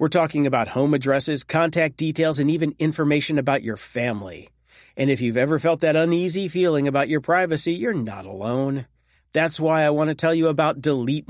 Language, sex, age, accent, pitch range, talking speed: English, male, 40-59, American, 130-170 Hz, 190 wpm